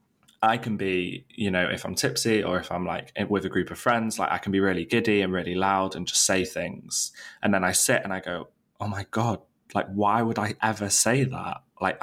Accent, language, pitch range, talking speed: British, English, 95-105 Hz, 240 wpm